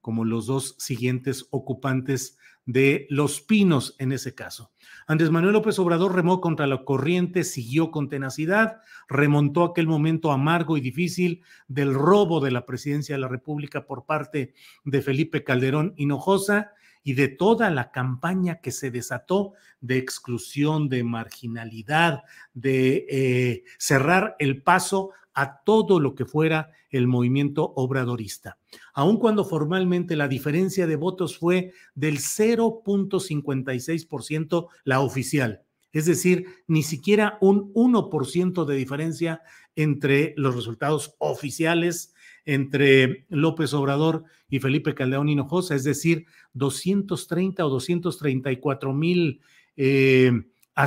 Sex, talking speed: male, 120 wpm